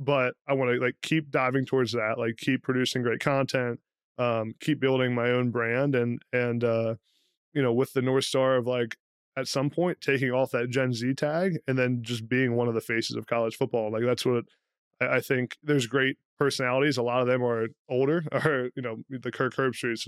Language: English